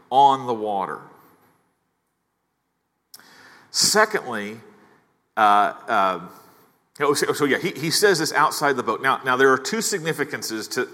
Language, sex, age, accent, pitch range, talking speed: English, male, 40-59, American, 120-160 Hz, 120 wpm